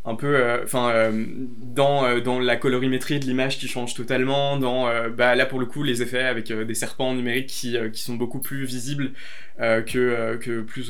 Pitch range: 120-135 Hz